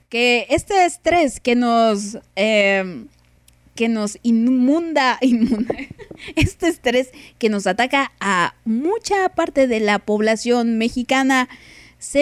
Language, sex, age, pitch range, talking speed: Spanish, female, 20-39, 210-285 Hz, 110 wpm